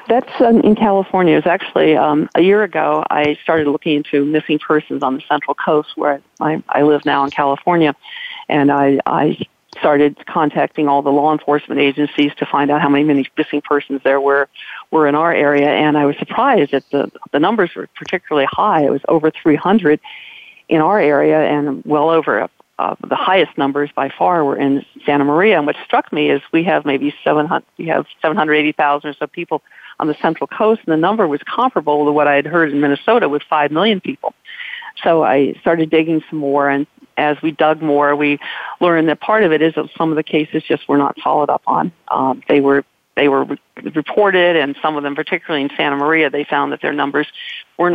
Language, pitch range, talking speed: English, 140-160 Hz, 210 wpm